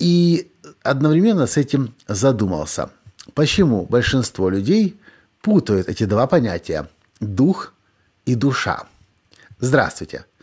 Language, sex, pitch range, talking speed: Russian, male, 110-165 Hz, 90 wpm